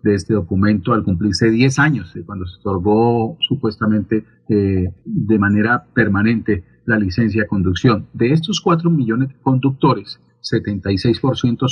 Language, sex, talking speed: Spanish, male, 135 wpm